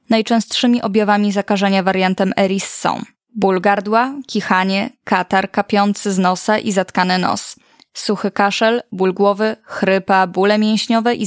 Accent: native